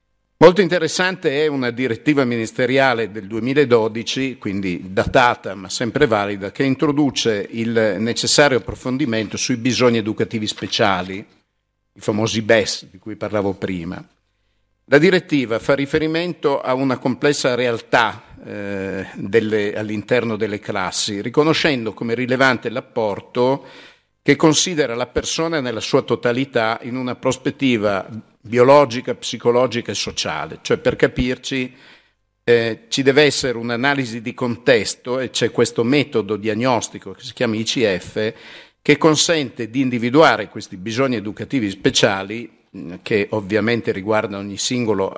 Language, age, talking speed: Italian, 50-69, 120 wpm